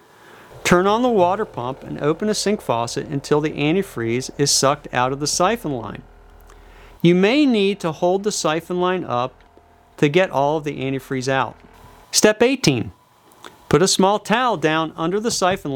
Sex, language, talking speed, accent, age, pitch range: male, English, 175 wpm, American, 40-59, 140-200 Hz